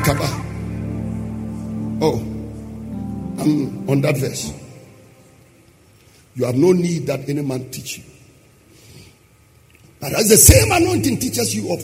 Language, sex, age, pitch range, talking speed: English, male, 50-69, 115-170 Hz, 110 wpm